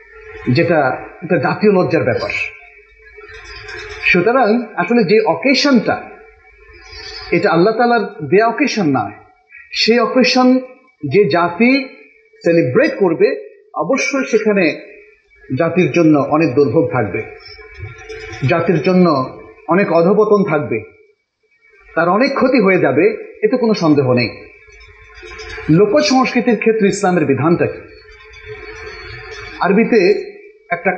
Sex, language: male, Bengali